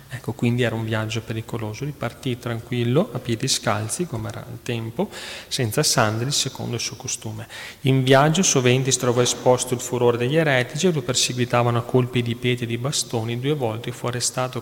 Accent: native